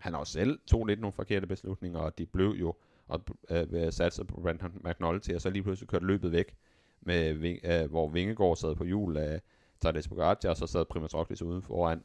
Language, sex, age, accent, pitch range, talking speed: Danish, male, 30-49, native, 80-95 Hz, 210 wpm